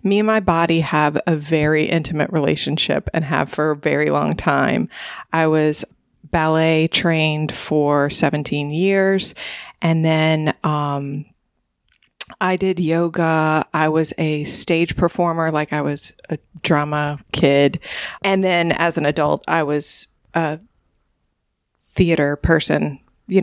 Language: English